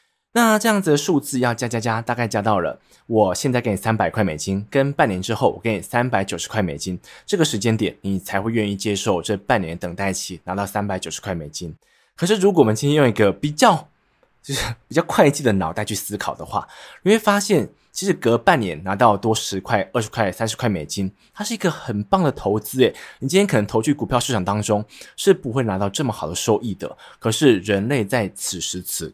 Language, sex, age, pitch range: Chinese, male, 20-39, 100-140 Hz